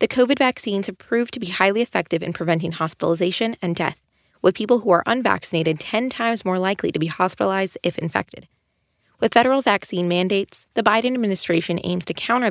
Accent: American